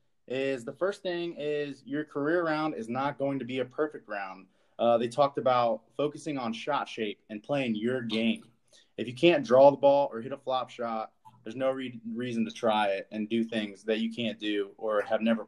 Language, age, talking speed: English, 20-39, 215 wpm